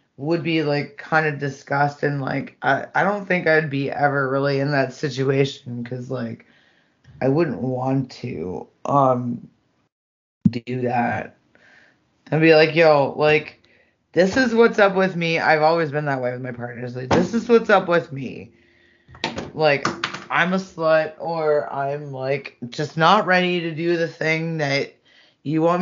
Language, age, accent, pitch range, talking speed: English, 20-39, American, 135-165 Hz, 165 wpm